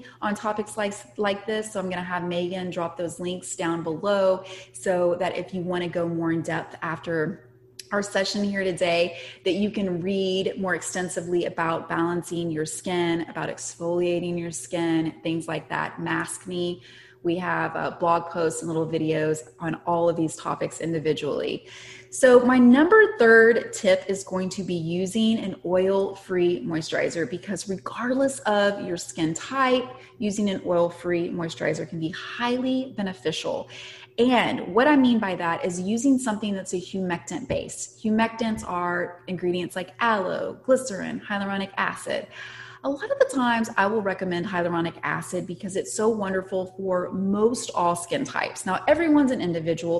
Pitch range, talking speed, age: 170-205 Hz, 165 wpm, 20-39